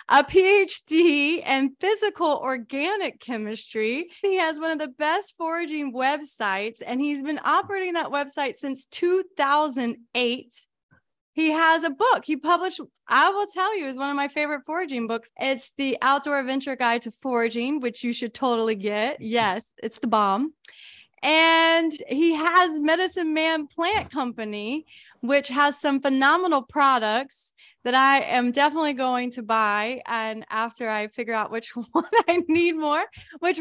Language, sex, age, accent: English, female, 20-39, American